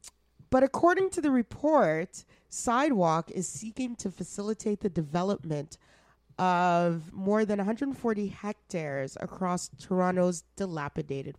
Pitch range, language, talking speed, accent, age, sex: 170-235 Hz, English, 105 wpm, American, 30-49, female